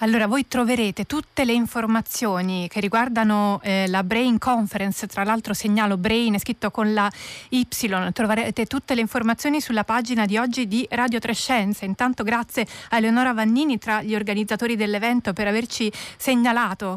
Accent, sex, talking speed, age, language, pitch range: native, female, 160 wpm, 30-49, Italian, 210-250 Hz